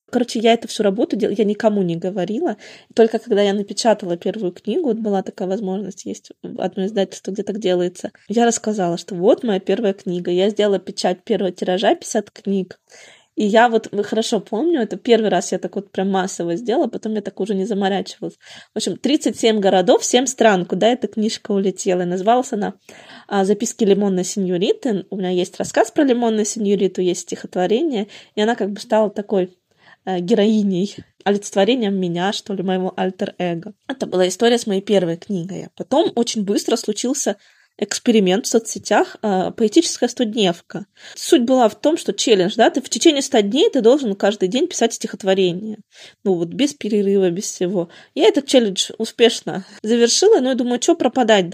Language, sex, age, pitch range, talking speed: Russian, female, 20-39, 190-230 Hz, 175 wpm